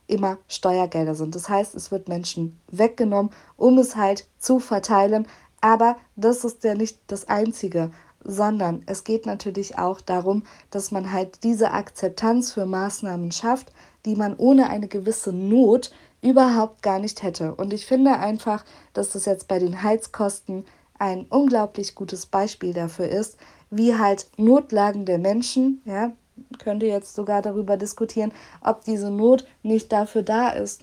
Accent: German